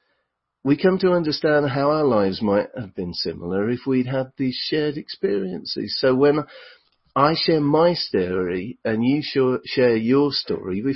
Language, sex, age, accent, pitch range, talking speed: English, male, 40-59, British, 110-150 Hz, 160 wpm